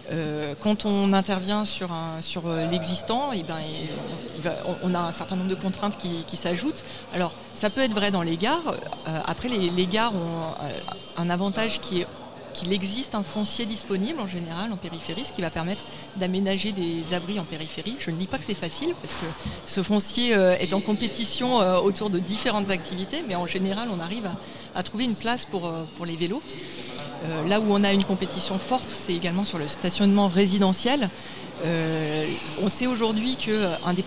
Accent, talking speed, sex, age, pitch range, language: French, 190 wpm, female, 30-49, 175-210 Hz, French